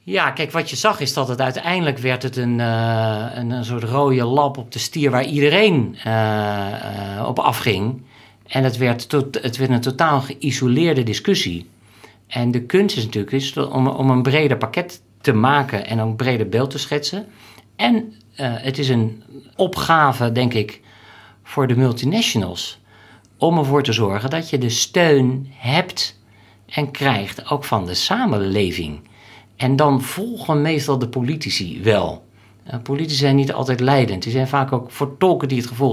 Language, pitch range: Dutch, 110-140 Hz